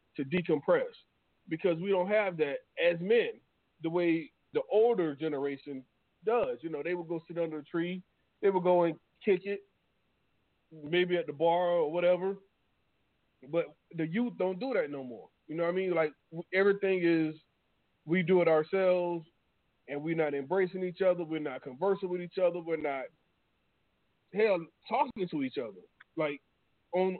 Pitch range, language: 155-190 Hz, English